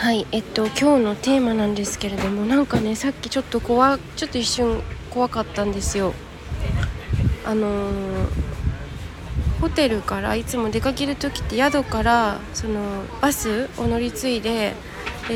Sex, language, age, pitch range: female, Japanese, 20-39, 210-280 Hz